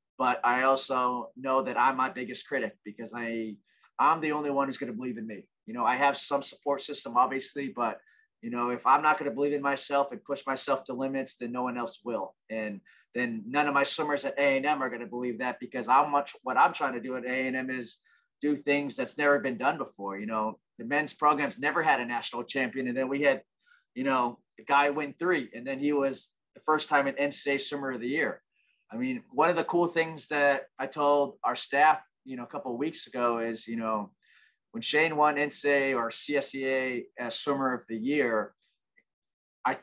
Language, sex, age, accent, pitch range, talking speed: English, male, 30-49, American, 125-145 Hz, 220 wpm